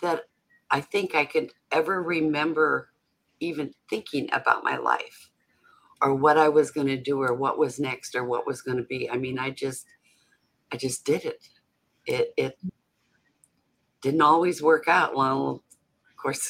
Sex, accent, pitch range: female, American, 140-170 Hz